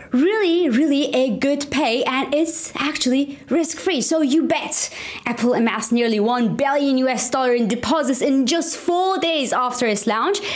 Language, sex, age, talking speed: English, female, 20-39, 160 wpm